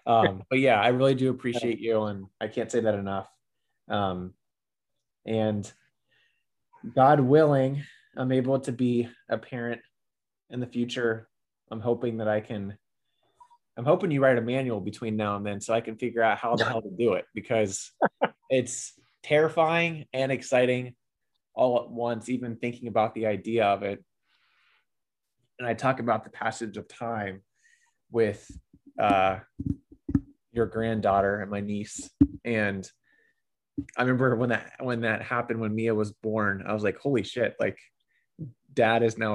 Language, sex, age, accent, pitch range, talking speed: English, male, 20-39, American, 110-130 Hz, 160 wpm